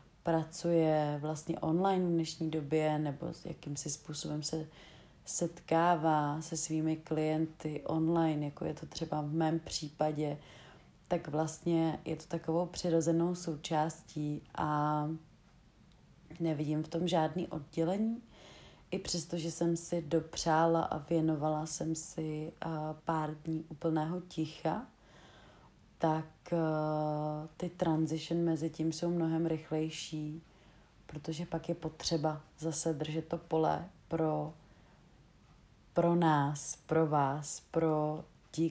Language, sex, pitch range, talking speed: Czech, female, 155-165 Hz, 110 wpm